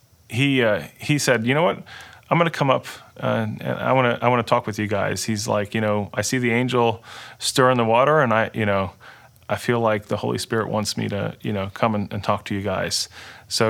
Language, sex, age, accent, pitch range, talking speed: English, male, 30-49, American, 105-125 Hz, 250 wpm